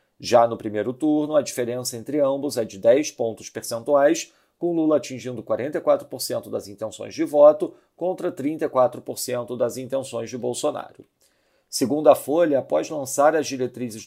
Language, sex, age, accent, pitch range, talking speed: Portuguese, male, 40-59, Brazilian, 125-150 Hz, 145 wpm